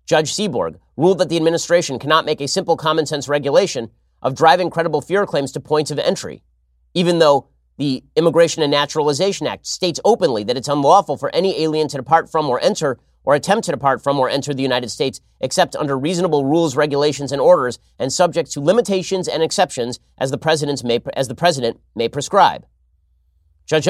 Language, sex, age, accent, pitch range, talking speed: English, male, 30-49, American, 130-170 Hz, 180 wpm